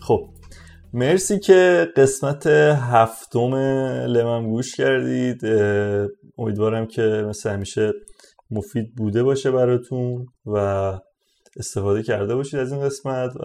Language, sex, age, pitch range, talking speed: Persian, male, 30-49, 105-125 Hz, 105 wpm